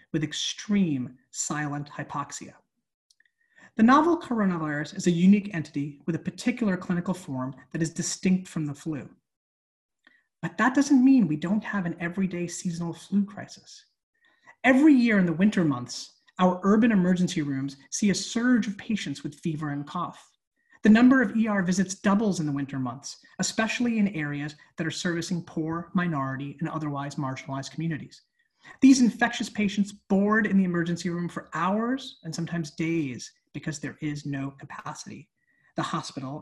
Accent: American